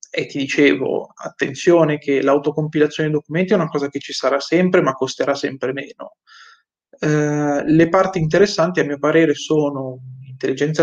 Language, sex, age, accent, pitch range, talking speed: Italian, male, 20-39, native, 140-160 Hz, 155 wpm